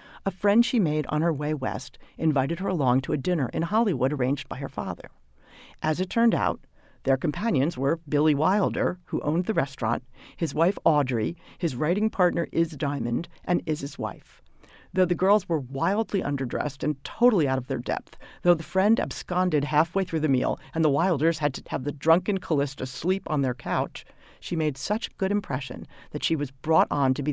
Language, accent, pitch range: English, American, 135-175 Hz